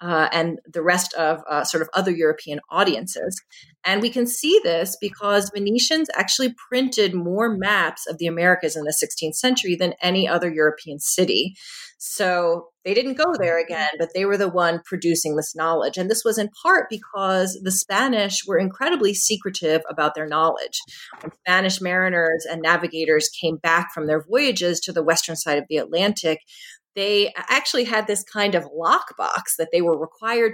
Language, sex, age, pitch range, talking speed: English, female, 30-49, 165-205 Hz, 175 wpm